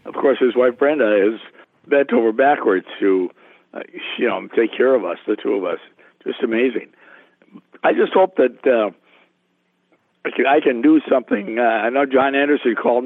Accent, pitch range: American, 120-145 Hz